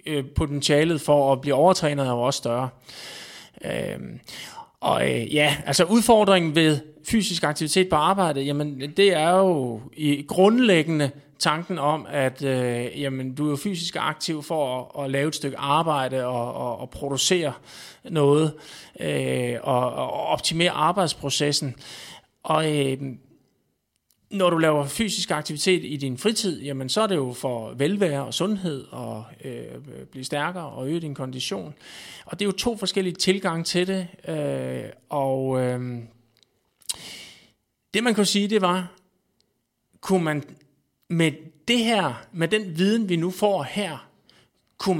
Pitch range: 140-185 Hz